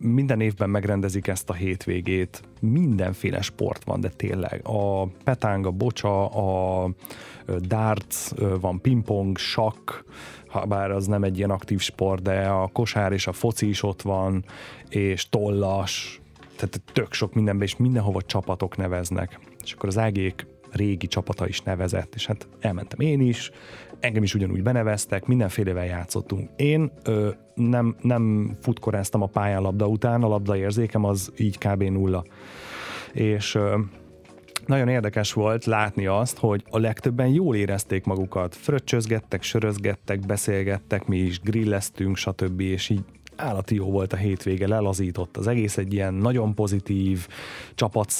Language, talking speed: Hungarian, 140 wpm